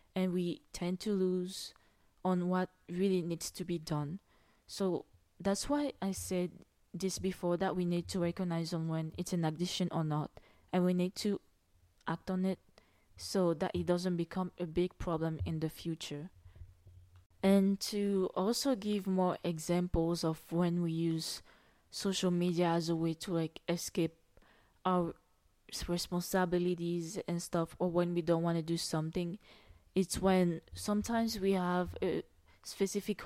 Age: 20-39